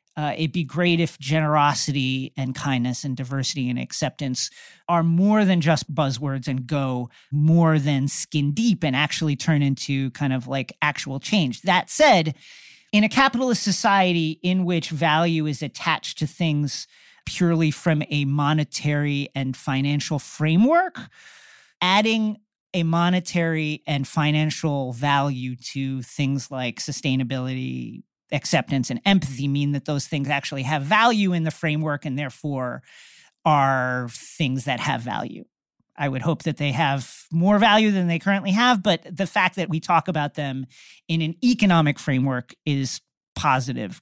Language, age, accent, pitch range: English, 40-59, American, 135-180 Hz